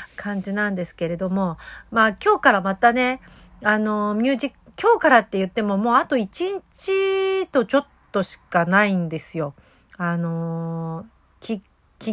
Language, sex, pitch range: Japanese, female, 175-255 Hz